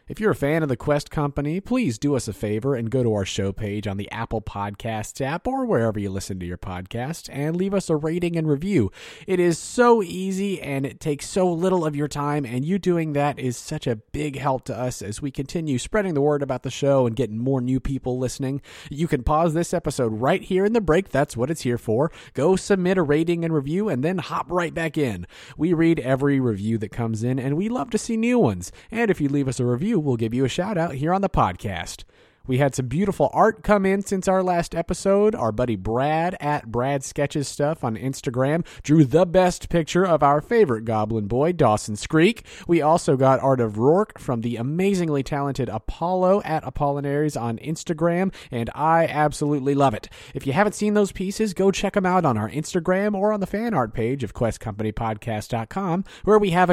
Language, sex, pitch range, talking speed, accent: English, male, 125-175 Hz, 220 wpm, American